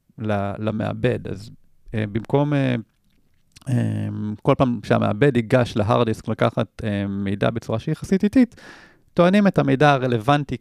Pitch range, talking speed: 110-145 Hz, 130 wpm